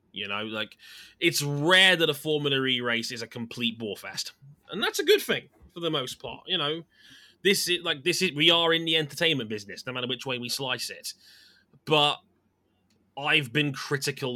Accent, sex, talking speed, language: British, male, 200 wpm, English